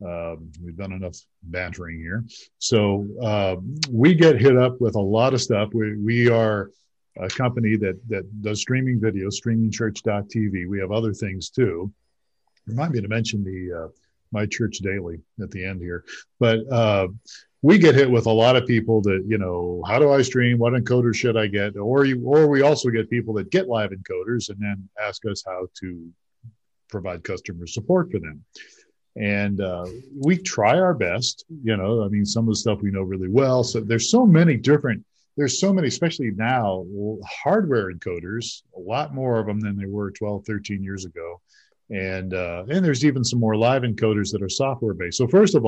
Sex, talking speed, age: male, 195 wpm, 50-69